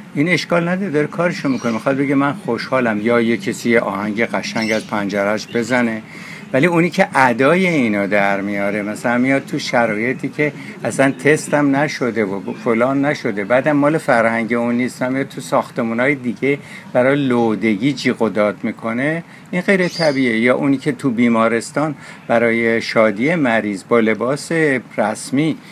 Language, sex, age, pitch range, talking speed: Persian, male, 60-79, 115-150 Hz, 145 wpm